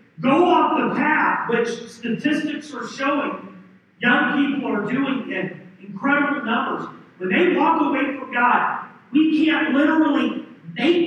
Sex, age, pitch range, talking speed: male, 40-59, 235-315 Hz, 135 wpm